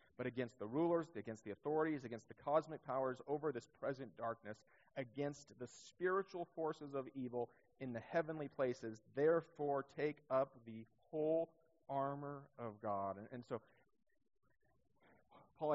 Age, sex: 30-49, male